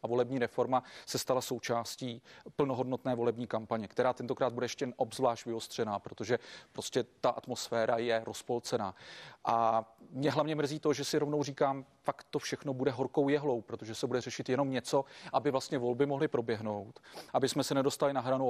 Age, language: 40-59, Czech